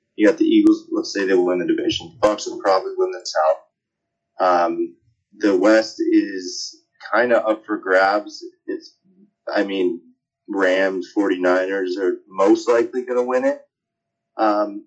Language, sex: English, male